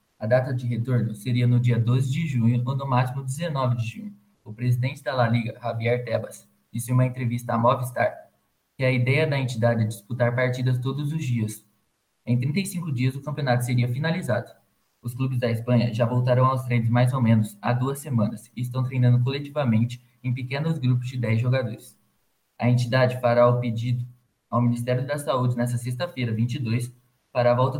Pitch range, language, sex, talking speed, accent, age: 120-130 Hz, Portuguese, male, 185 wpm, Brazilian, 20-39